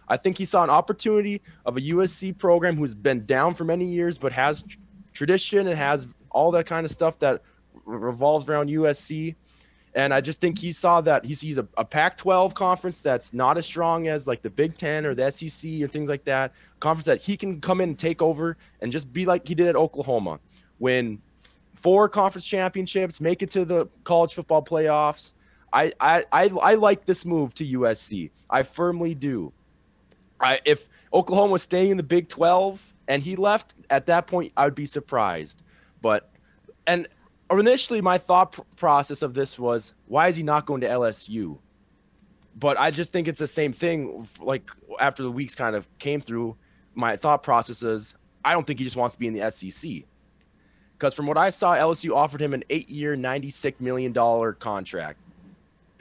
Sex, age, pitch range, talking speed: male, 20-39, 135-180 Hz, 195 wpm